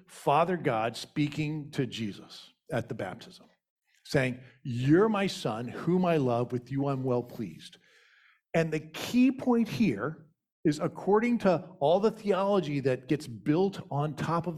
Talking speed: 150 wpm